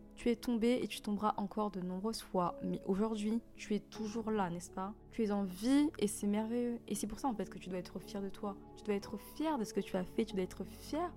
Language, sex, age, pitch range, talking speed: French, female, 20-39, 190-230 Hz, 280 wpm